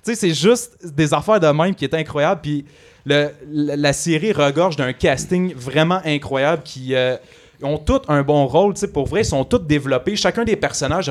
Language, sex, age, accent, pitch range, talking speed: French, male, 30-49, Canadian, 130-165 Hz, 195 wpm